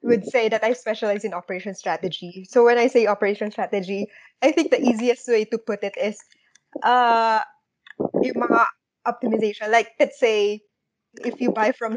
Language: English